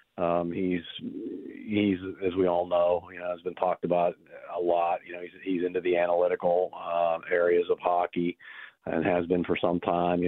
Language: English